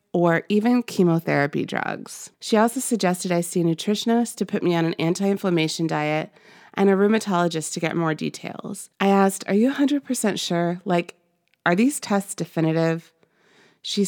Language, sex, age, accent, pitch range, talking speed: English, female, 30-49, American, 165-210 Hz, 160 wpm